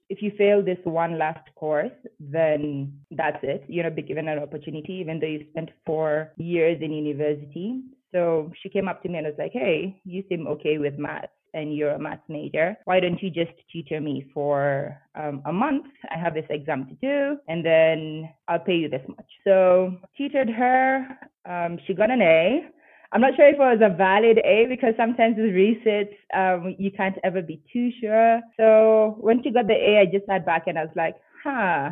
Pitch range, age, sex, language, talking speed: 155-205 Hz, 20-39, female, English, 205 wpm